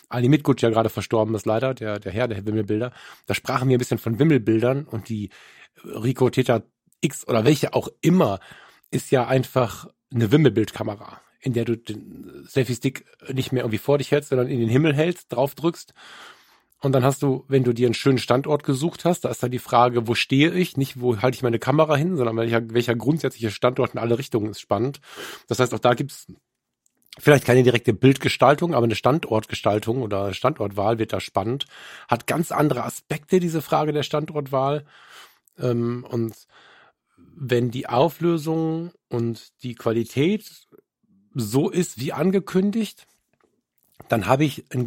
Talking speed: 175 wpm